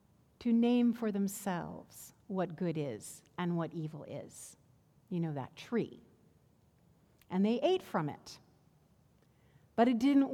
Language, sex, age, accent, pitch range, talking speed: English, female, 60-79, American, 195-250 Hz, 135 wpm